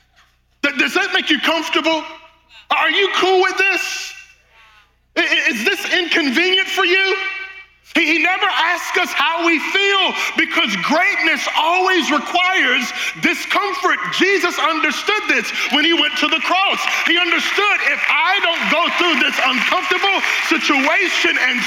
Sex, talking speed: male, 130 wpm